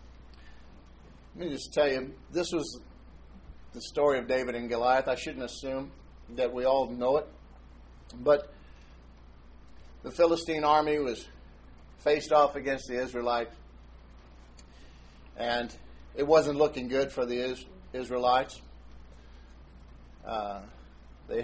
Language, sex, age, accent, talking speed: English, male, 50-69, American, 115 wpm